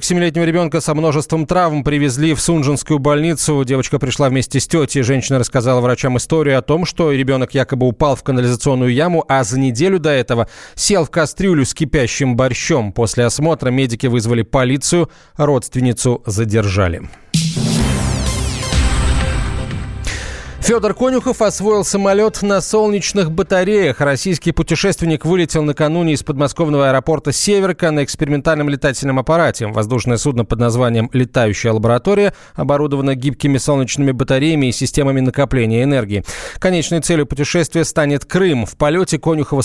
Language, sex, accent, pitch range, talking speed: Russian, male, native, 125-160 Hz, 130 wpm